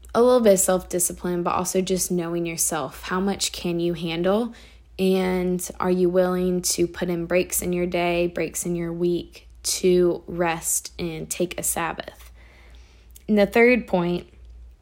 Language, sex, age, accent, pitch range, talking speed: English, female, 20-39, American, 175-215 Hz, 160 wpm